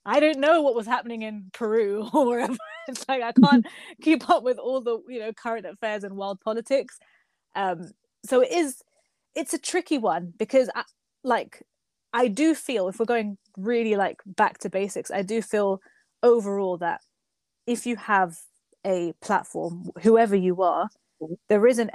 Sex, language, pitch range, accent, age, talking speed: female, English, 185-230 Hz, British, 20-39, 175 wpm